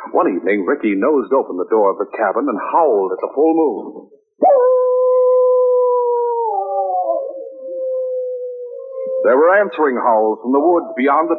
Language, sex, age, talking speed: English, male, 60-79, 130 wpm